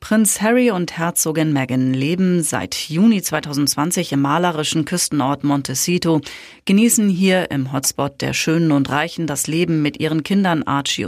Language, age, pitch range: German, 30-49, 145-180 Hz